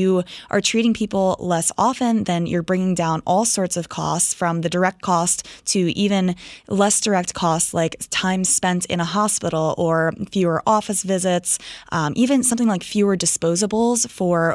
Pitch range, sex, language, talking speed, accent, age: 175-220 Hz, female, English, 165 wpm, American, 20-39